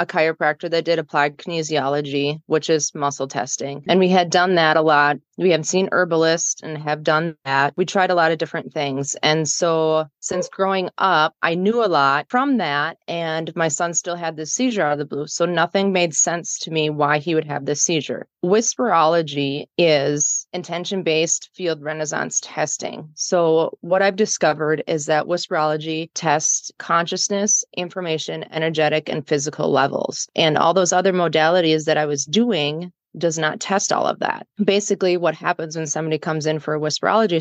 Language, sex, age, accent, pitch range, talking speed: English, female, 30-49, American, 150-175 Hz, 180 wpm